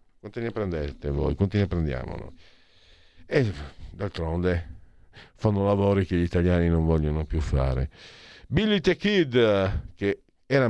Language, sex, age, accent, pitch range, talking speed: Italian, male, 50-69, native, 85-125 Hz, 135 wpm